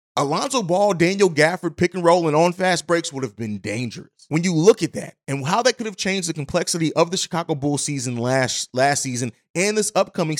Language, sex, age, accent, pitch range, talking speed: English, male, 30-49, American, 140-185 Hz, 225 wpm